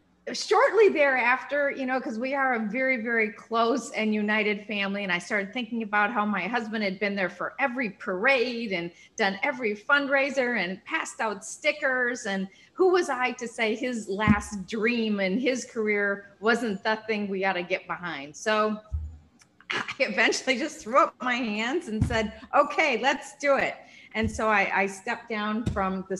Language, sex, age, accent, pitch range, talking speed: English, female, 40-59, American, 200-260 Hz, 180 wpm